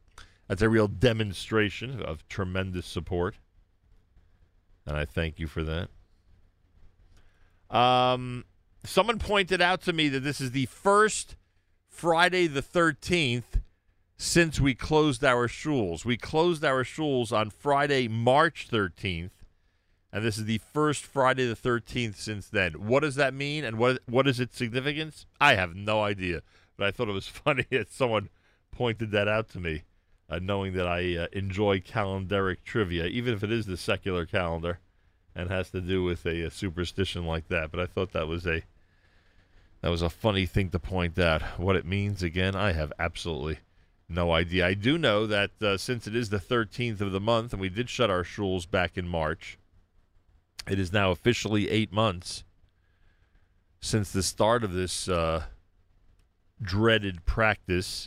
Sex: male